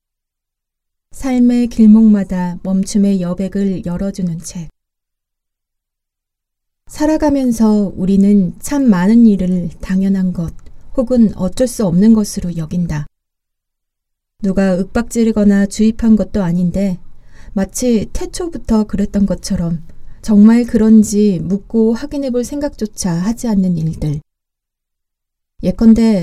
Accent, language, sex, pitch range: native, Korean, female, 185-230 Hz